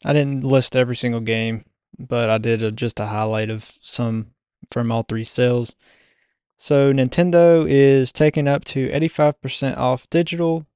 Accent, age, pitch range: American, 20-39, 120-155 Hz